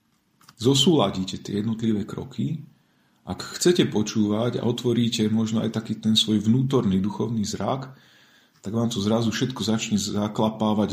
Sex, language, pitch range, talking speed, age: male, Slovak, 95-125 Hz, 130 wpm, 40-59